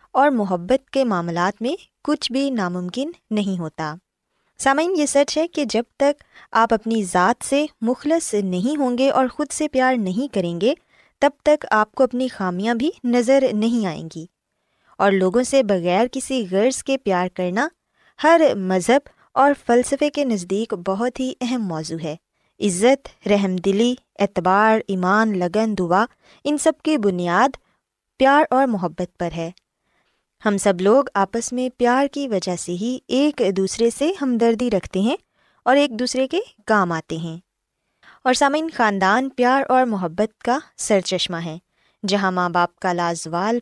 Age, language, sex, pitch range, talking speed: 20-39, Urdu, female, 190-265 Hz, 160 wpm